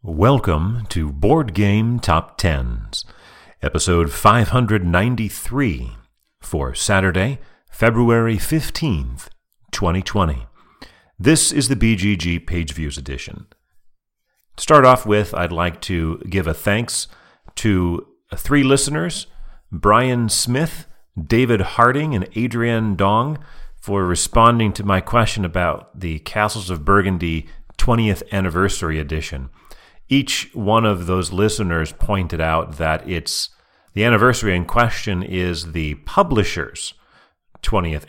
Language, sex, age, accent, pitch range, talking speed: English, male, 40-59, American, 85-115 Hz, 110 wpm